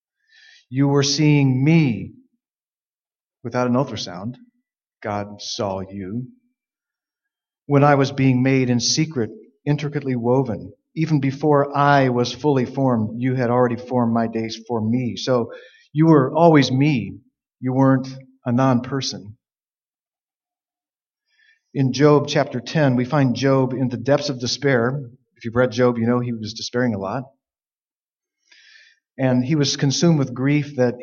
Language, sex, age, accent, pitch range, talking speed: English, male, 40-59, American, 125-150 Hz, 140 wpm